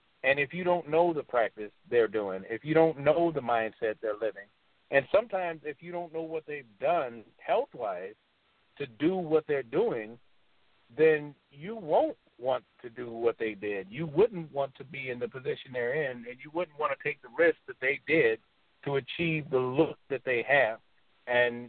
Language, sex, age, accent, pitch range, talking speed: English, male, 50-69, American, 135-170 Hz, 195 wpm